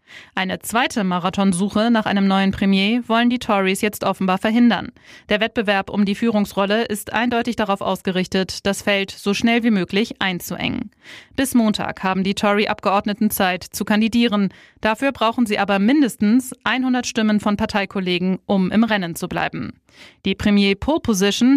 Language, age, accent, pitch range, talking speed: German, 20-39, German, 195-235 Hz, 155 wpm